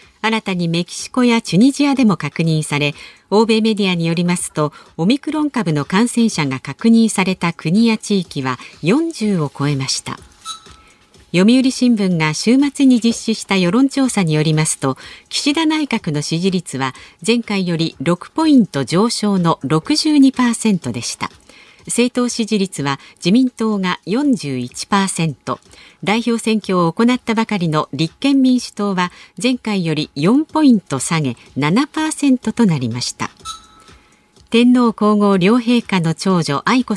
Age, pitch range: 50-69, 160-240 Hz